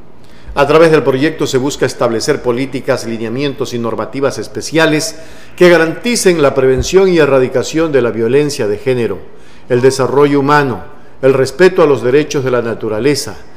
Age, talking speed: 50-69, 150 wpm